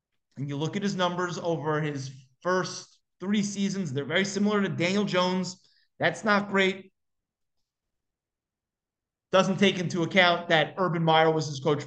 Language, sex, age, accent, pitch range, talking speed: English, male, 30-49, American, 180-245 Hz, 150 wpm